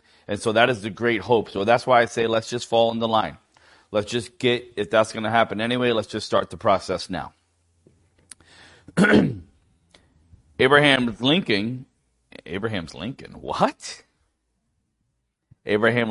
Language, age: English, 30-49